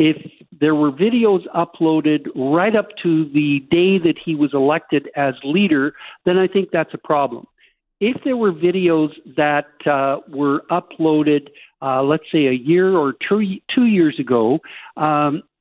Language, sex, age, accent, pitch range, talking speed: English, male, 60-79, American, 145-185 Hz, 160 wpm